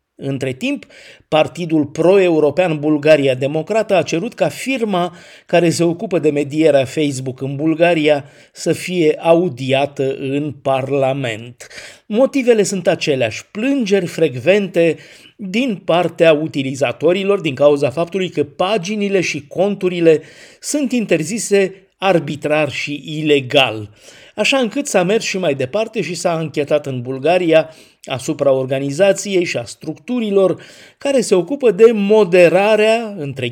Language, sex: Romanian, male